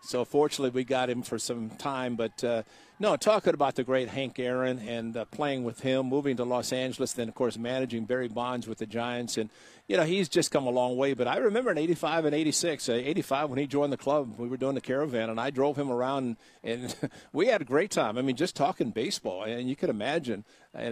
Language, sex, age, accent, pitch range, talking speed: English, male, 50-69, American, 120-140 Hz, 245 wpm